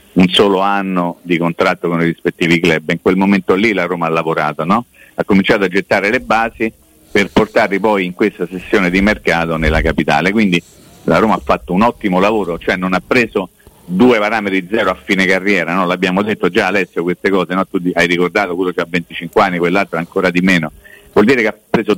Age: 50-69